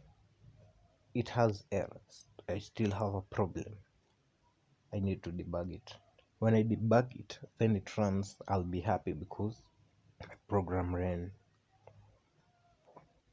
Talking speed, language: 120 wpm, Swahili